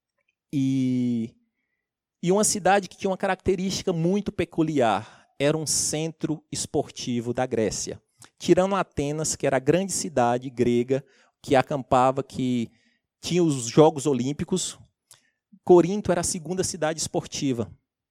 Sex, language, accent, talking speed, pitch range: male, Portuguese, Brazilian, 125 wpm, 145-200 Hz